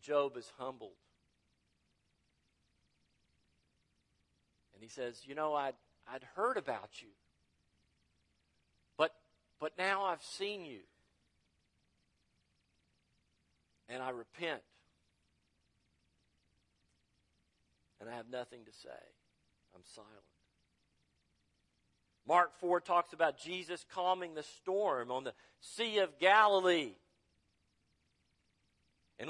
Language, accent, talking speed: English, American, 90 wpm